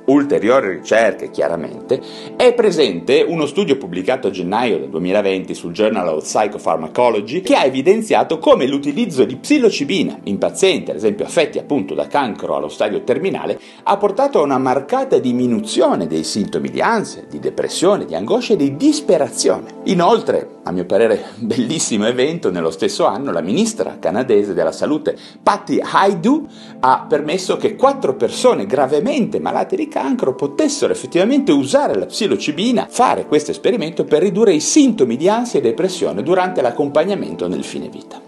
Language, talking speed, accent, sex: Italian, 150 wpm, native, male